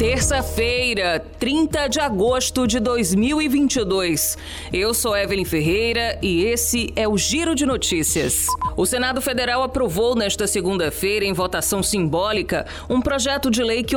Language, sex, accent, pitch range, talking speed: Portuguese, female, Brazilian, 185-240 Hz, 135 wpm